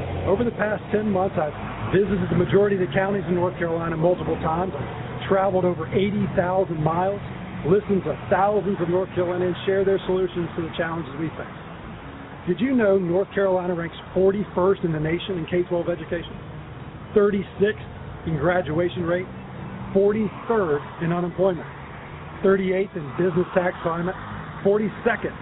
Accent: American